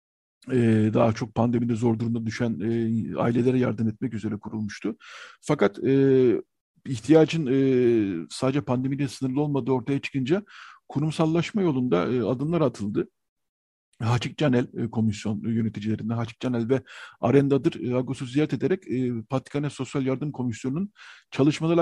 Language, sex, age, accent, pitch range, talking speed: Turkish, male, 50-69, native, 120-150 Hz, 130 wpm